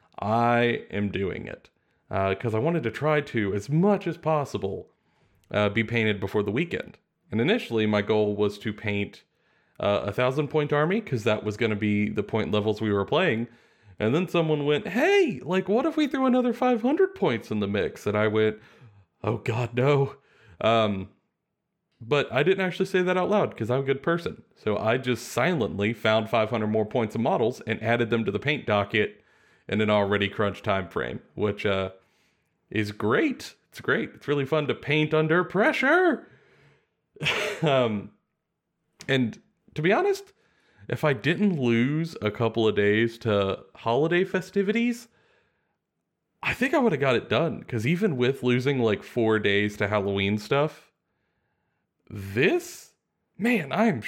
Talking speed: 170 wpm